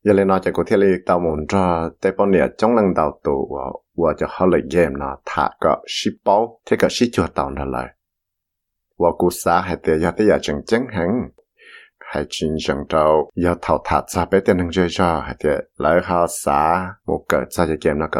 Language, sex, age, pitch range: English, male, 60-79, 80-105 Hz